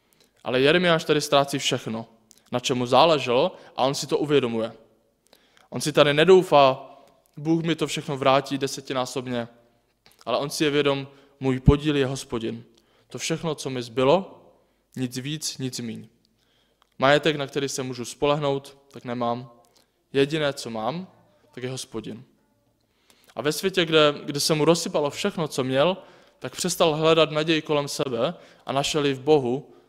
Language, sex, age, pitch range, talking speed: Czech, male, 20-39, 125-150 Hz, 155 wpm